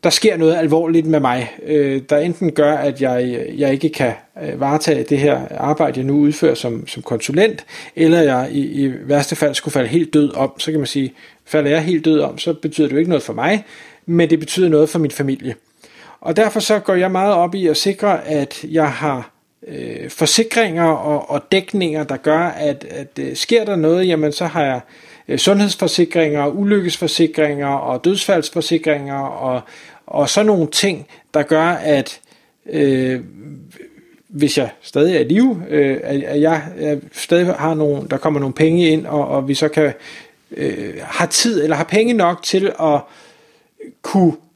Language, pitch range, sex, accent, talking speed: Danish, 145-170 Hz, male, native, 180 wpm